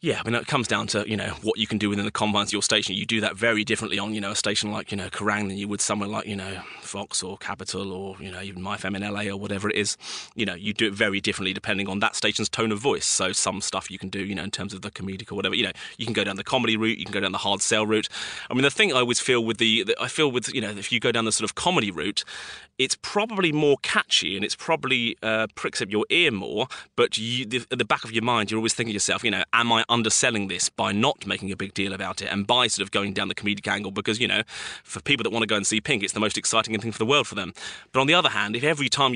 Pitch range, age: 100-115 Hz, 30-49